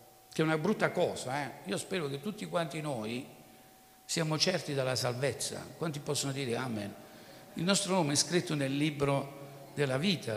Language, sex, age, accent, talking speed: Italian, male, 60-79, native, 170 wpm